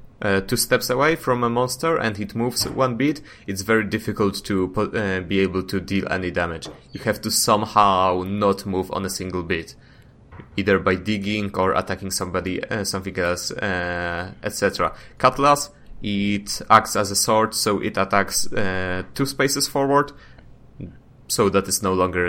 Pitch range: 95-120 Hz